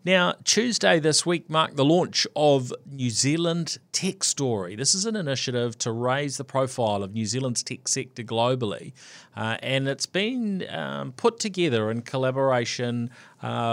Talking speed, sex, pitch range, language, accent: 155 wpm, male, 110-140 Hz, English, Australian